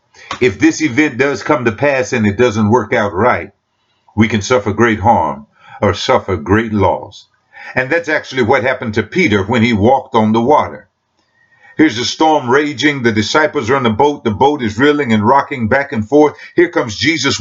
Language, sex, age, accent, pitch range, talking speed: English, male, 50-69, American, 115-165 Hz, 195 wpm